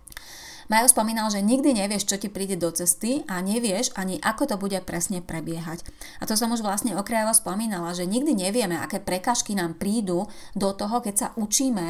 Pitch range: 180-220 Hz